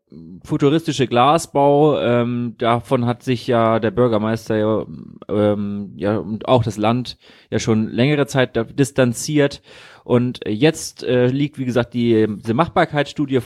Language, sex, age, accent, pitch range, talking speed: German, male, 30-49, German, 115-140 Hz, 125 wpm